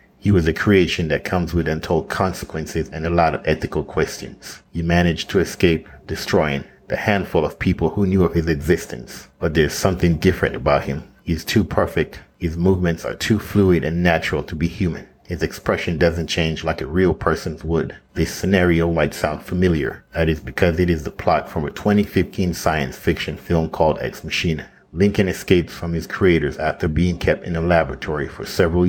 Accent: American